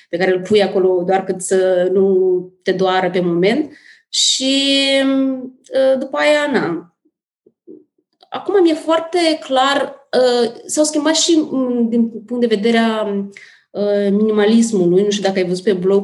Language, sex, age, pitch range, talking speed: Romanian, female, 20-39, 190-245 Hz, 135 wpm